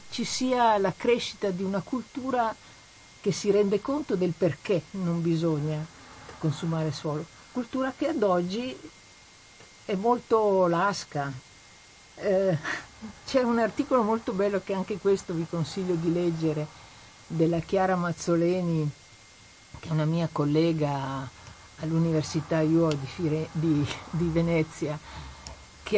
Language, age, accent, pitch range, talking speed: Italian, 50-69, native, 160-210 Hz, 115 wpm